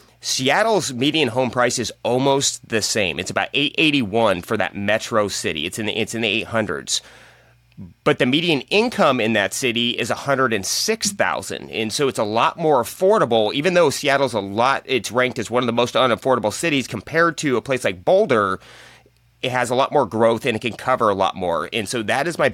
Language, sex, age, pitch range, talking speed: English, male, 30-49, 110-135 Hz, 200 wpm